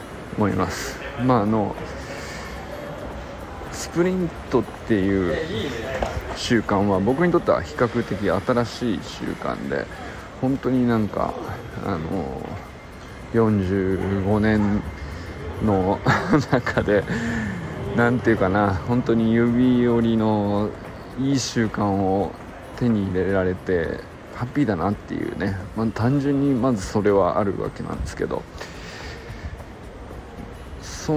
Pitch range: 95-125 Hz